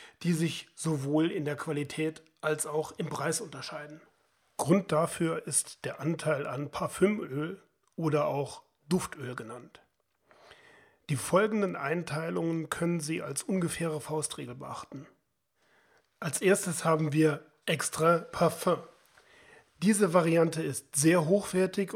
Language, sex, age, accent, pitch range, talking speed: German, male, 40-59, German, 150-185 Hz, 115 wpm